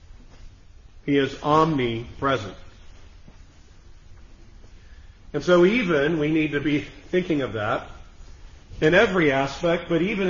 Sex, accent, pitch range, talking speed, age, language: male, American, 95-150 Hz, 105 wpm, 40-59, English